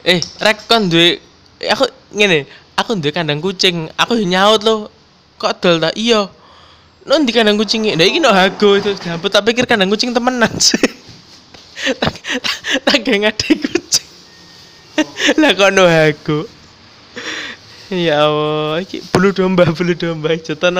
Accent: native